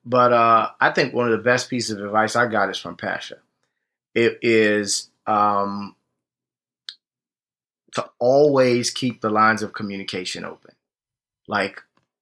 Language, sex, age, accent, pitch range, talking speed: English, male, 30-49, American, 105-120 Hz, 135 wpm